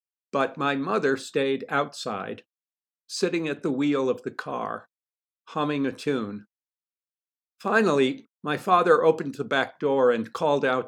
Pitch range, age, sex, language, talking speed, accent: 120-150 Hz, 60-79, male, English, 140 wpm, American